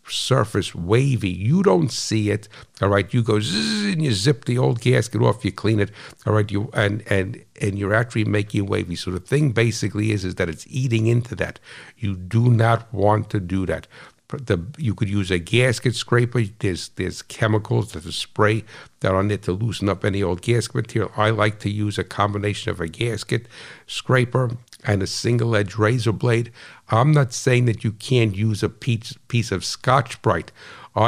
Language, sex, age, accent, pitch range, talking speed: English, male, 60-79, American, 100-120 Hz, 195 wpm